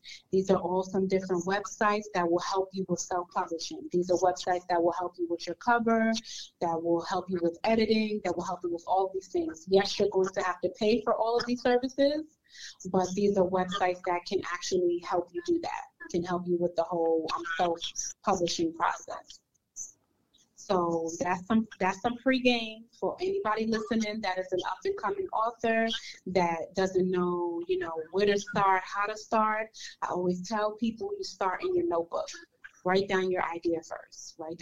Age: 30-49